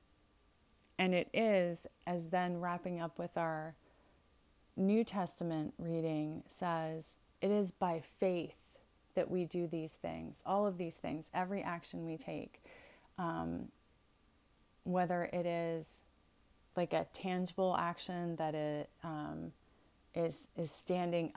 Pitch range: 155-185 Hz